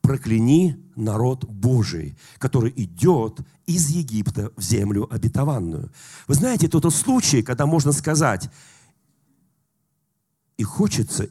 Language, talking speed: Russian, 100 wpm